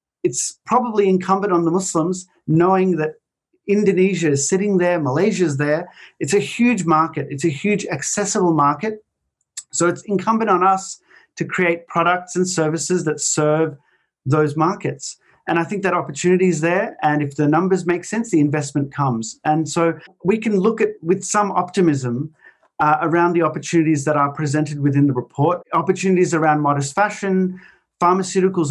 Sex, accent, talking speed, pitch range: male, Australian, 165 wpm, 150-185 Hz